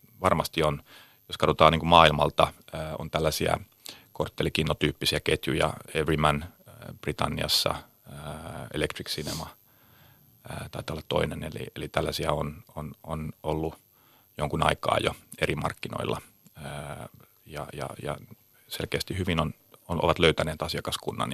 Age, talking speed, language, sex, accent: 30-49, 105 wpm, Finnish, male, native